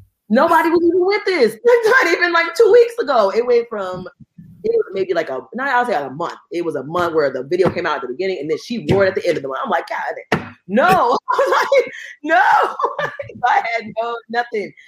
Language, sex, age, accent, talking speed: English, female, 30-49, American, 240 wpm